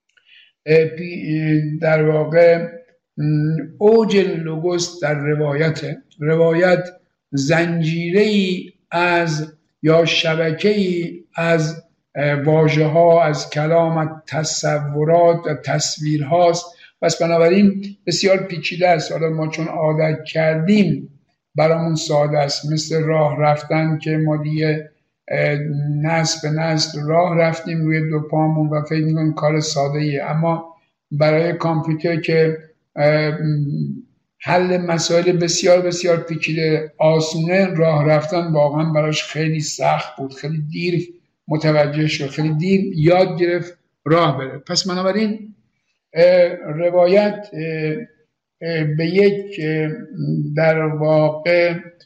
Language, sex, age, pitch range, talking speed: Persian, male, 60-79, 155-170 Hz, 105 wpm